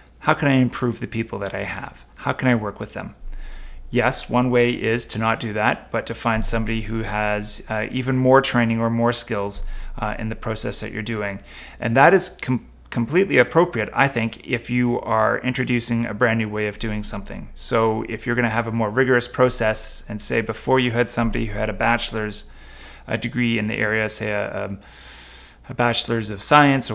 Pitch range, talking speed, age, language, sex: 105-125 Hz, 200 wpm, 30-49, English, male